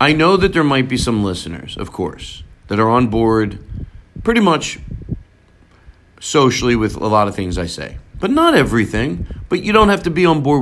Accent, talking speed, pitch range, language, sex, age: American, 200 wpm, 90-125 Hz, English, male, 40-59